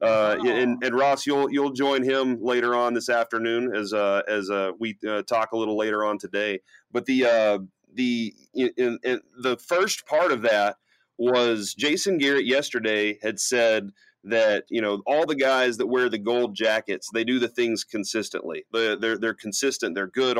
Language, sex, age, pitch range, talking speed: English, male, 30-49, 110-135 Hz, 185 wpm